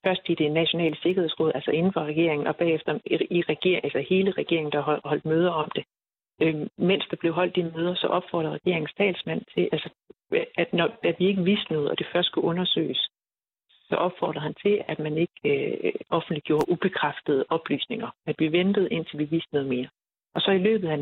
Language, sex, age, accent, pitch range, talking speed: Danish, female, 60-79, native, 155-190 Hz, 195 wpm